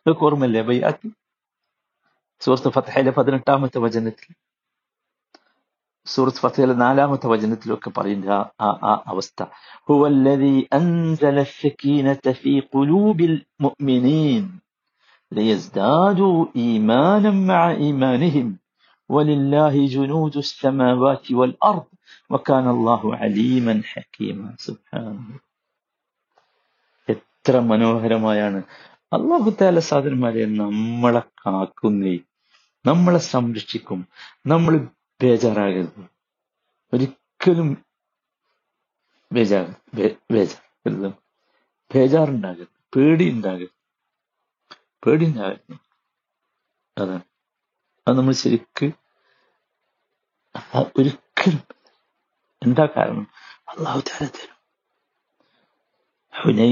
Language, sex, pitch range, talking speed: Malayalam, male, 115-150 Hz, 65 wpm